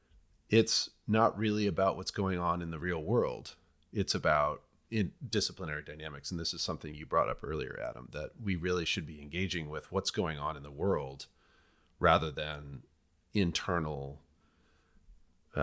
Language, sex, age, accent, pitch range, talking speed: English, male, 40-59, American, 80-105 Hz, 155 wpm